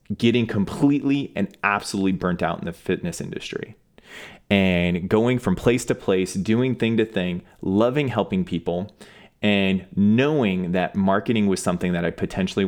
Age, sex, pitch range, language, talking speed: 30-49, male, 90-110 Hz, English, 150 wpm